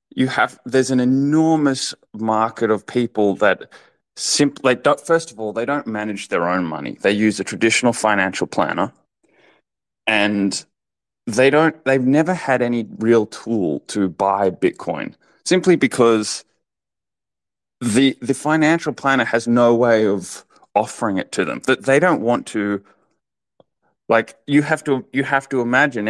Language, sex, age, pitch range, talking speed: English, male, 20-39, 110-135 Hz, 150 wpm